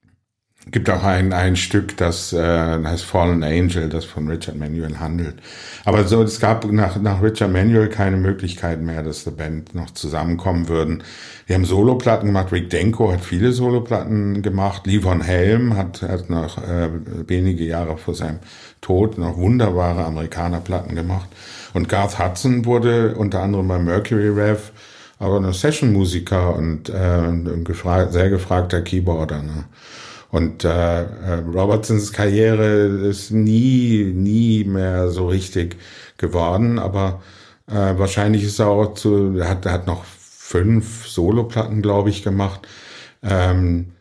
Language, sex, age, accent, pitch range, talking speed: German, male, 50-69, German, 85-105 Hz, 145 wpm